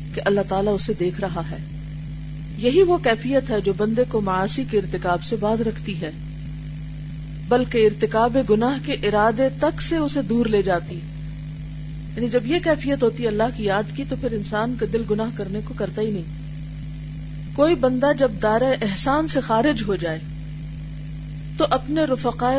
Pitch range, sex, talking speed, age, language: 150-230 Hz, female, 175 wpm, 40-59, Urdu